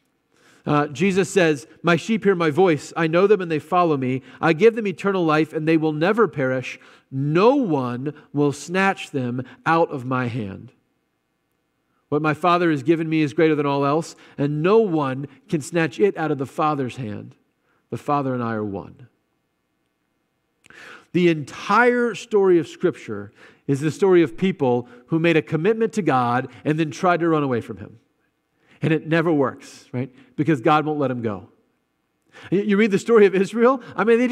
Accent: American